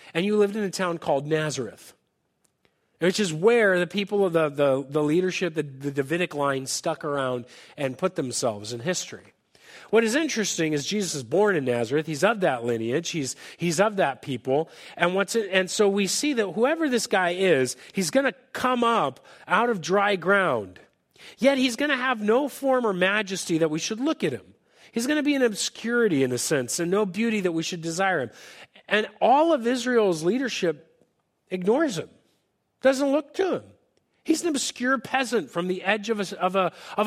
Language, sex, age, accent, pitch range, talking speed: English, male, 40-59, American, 160-230 Hz, 195 wpm